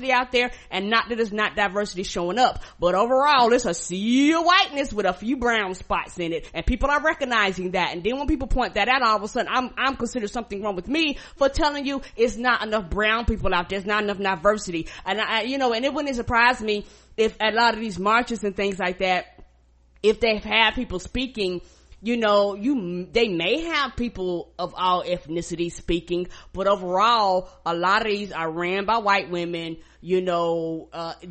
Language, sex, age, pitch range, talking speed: English, female, 20-39, 180-235 Hz, 210 wpm